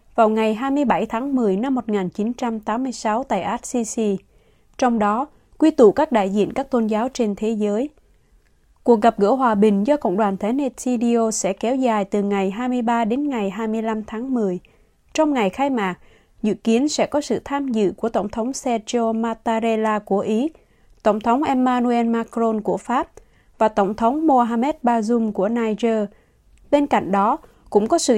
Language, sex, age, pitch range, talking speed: Vietnamese, female, 20-39, 210-255 Hz, 170 wpm